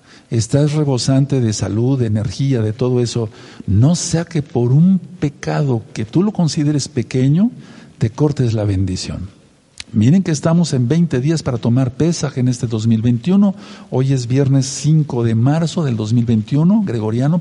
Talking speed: 155 wpm